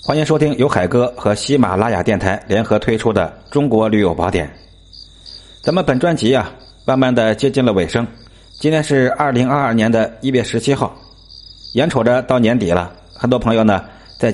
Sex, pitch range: male, 95-125 Hz